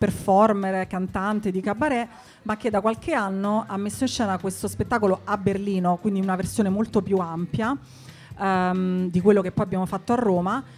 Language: English